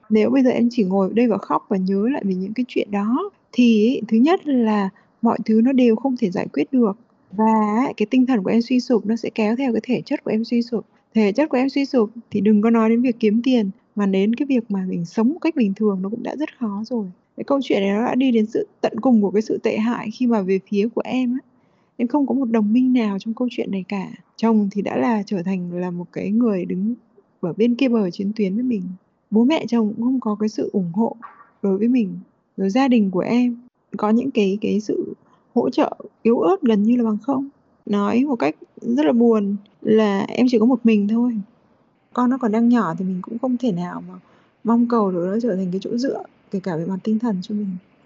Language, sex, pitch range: Vietnamese, female, 205-245 Hz